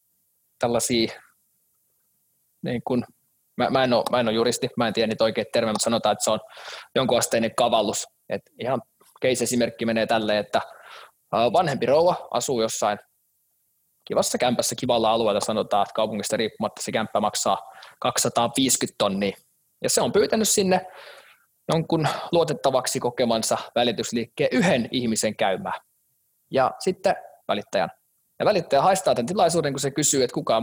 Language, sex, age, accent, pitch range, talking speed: Finnish, male, 20-39, native, 115-170 Hz, 140 wpm